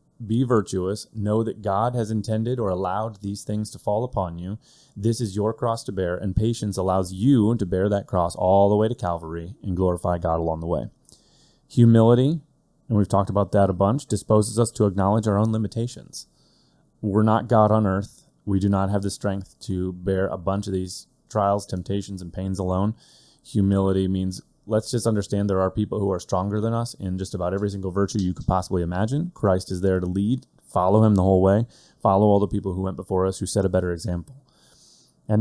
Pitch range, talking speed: 95-110 Hz, 210 wpm